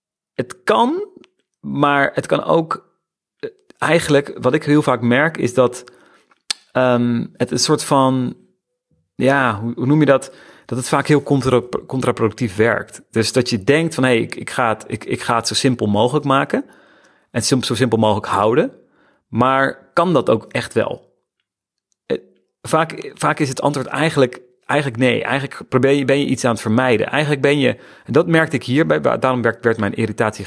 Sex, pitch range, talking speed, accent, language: male, 125-160 Hz, 180 wpm, Dutch, Dutch